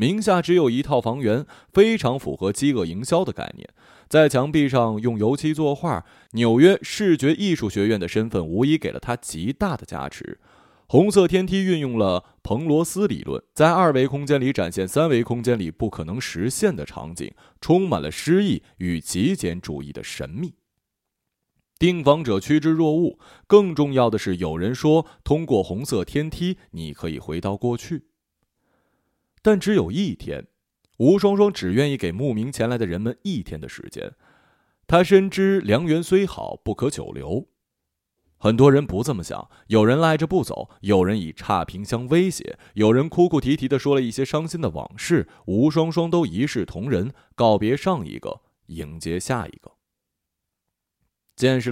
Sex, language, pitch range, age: male, Chinese, 105-170 Hz, 30-49